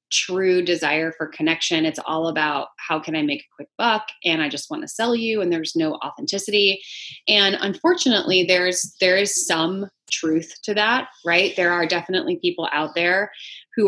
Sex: female